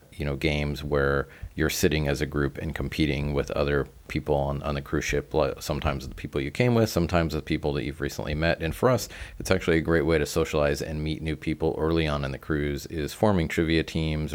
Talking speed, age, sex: 230 wpm, 30-49, male